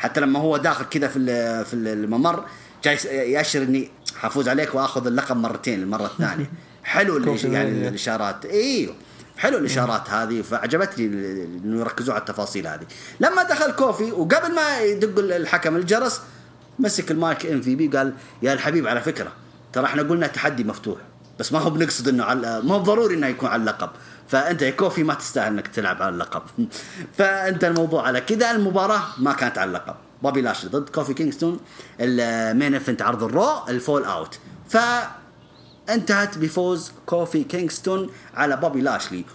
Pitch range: 125-190 Hz